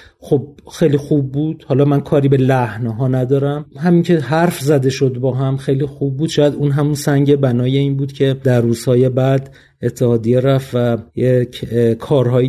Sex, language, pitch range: male, Persian, 130-165 Hz